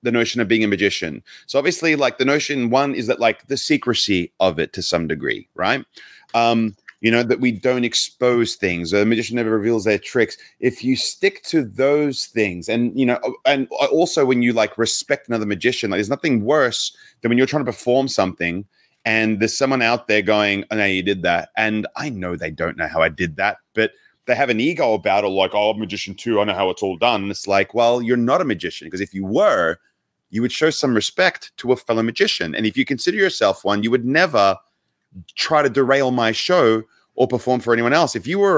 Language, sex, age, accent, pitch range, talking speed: English, male, 30-49, Australian, 105-135 Hz, 230 wpm